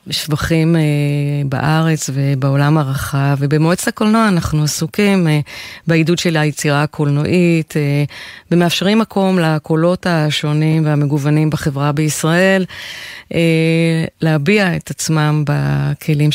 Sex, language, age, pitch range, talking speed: female, Hebrew, 30-49, 145-165 Hz, 100 wpm